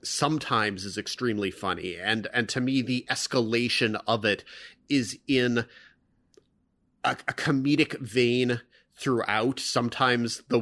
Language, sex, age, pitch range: English, male, 30-49, 110-130 Hz